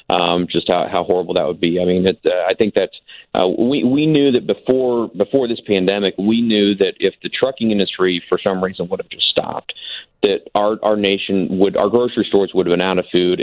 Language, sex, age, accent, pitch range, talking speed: English, male, 40-59, American, 90-100 Hz, 230 wpm